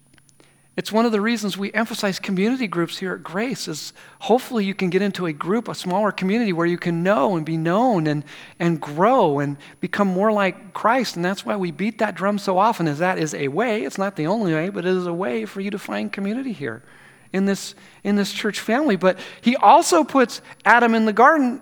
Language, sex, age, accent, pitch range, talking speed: English, male, 40-59, American, 155-205 Hz, 230 wpm